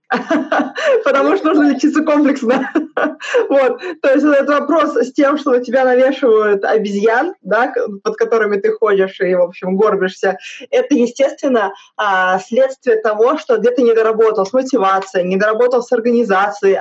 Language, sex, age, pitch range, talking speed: Russian, female, 20-39, 195-275 Hz, 145 wpm